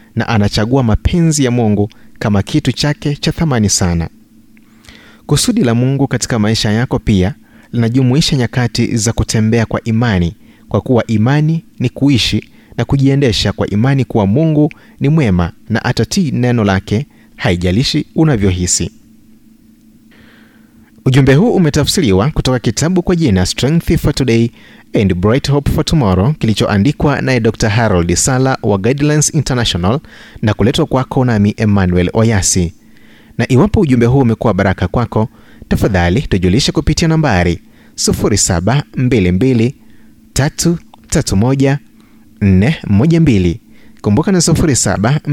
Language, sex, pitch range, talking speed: Swahili, male, 105-140 Hz, 120 wpm